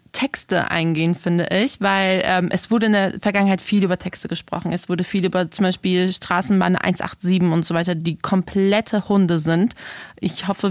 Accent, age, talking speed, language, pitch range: German, 20-39, 180 wpm, German, 185-220 Hz